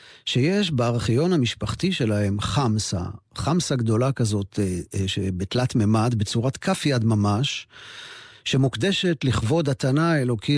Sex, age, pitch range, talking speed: male, 50-69, 110-145 Hz, 100 wpm